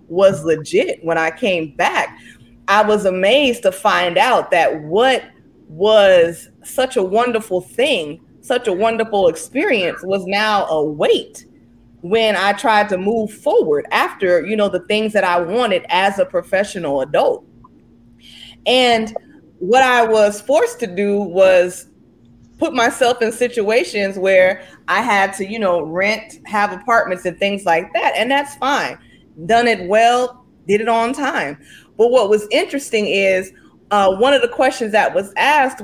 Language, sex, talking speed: English, female, 155 wpm